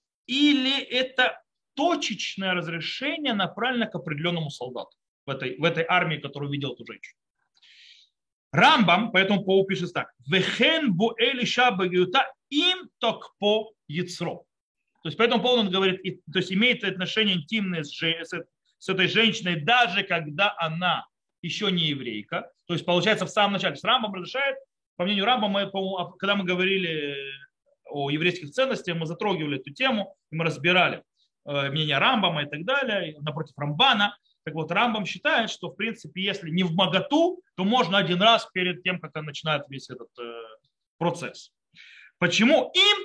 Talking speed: 140 wpm